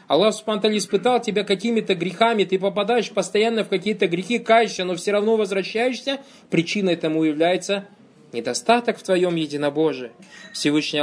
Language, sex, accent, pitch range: Russian, male, native, 150-215 Hz